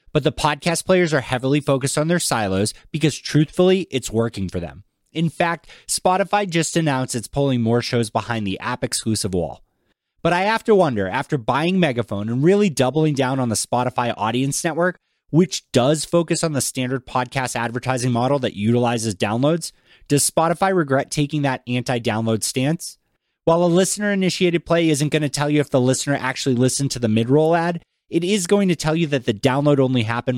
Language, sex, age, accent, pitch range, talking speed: English, male, 30-49, American, 120-160 Hz, 185 wpm